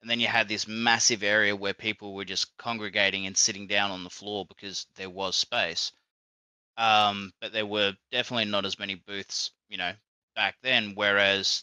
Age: 20-39